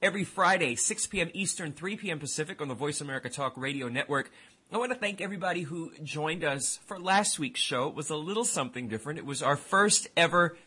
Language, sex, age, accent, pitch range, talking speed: English, male, 30-49, American, 140-180 Hz, 215 wpm